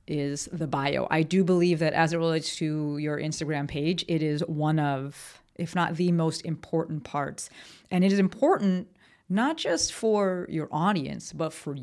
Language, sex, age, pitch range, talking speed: English, female, 30-49, 150-180 Hz, 180 wpm